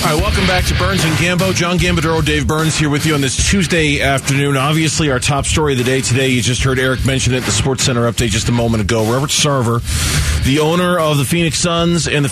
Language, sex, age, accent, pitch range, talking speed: English, male, 30-49, American, 110-140 Hz, 240 wpm